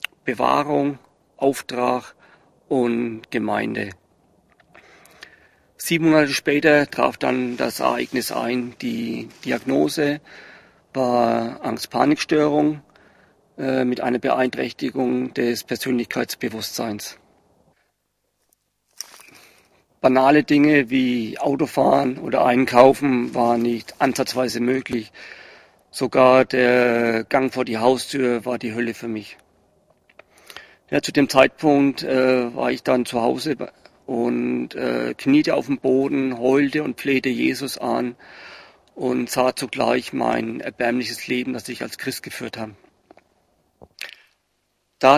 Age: 40-59